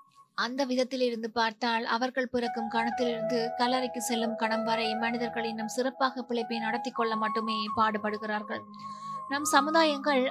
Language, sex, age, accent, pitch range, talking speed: Tamil, female, 20-39, native, 225-265 Hz, 115 wpm